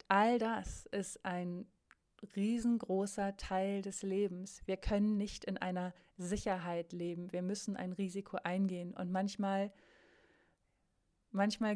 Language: German